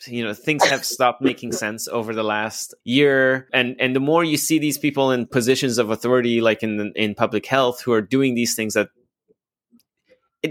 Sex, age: male, 20-39